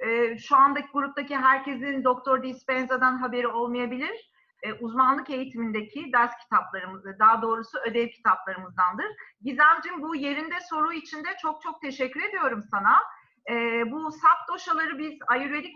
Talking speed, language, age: 135 wpm, Turkish, 40-59